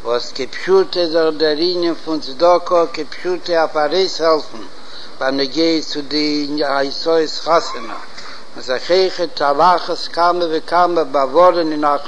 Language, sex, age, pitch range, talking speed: Hebrew, male, 60-79, 155-180 Hz, 110 wpm